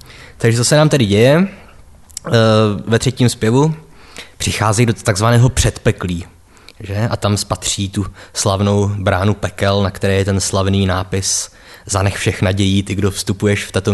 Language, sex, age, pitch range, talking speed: Czech, male, 20-39, 95-120 Hz, 150 wpm